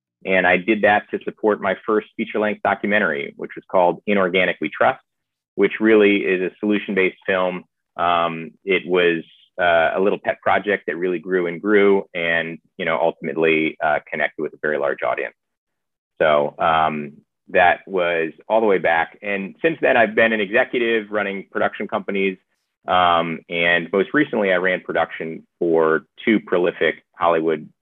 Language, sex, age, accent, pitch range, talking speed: English, male, 30-49, American, 80-100 Hz, 160 wpm